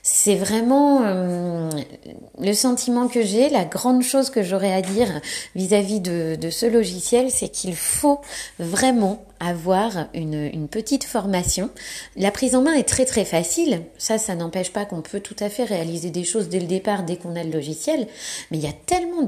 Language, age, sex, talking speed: French, 30-49, female, 190 wpm